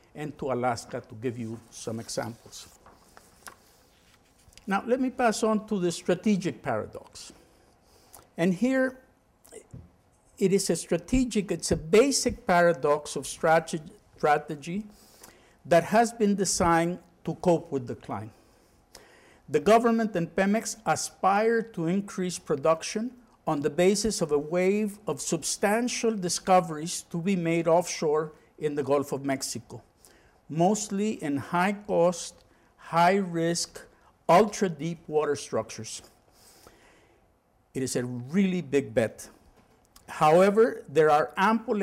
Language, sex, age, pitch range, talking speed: English, male, 50-69, 150-200 Hz, 115 wpm